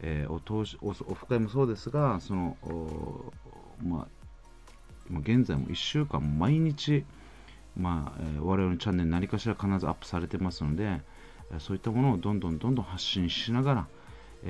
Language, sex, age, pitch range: Japanese, male, 40-59, 85-125 Hz